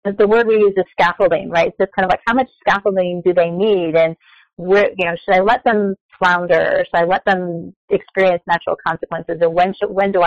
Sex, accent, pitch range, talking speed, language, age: female, American, 180-215 Hz, 235 wpm, English, 30-49